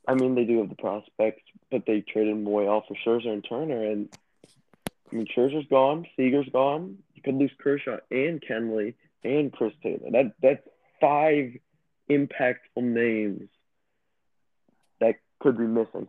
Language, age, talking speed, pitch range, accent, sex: English, 20-39, 150 wpm, 110-140 Hz, American, male